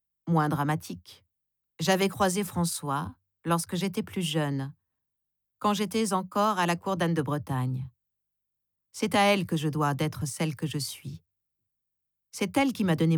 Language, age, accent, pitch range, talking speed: French, 50-69, French, 145-185 Hz, 155 wpm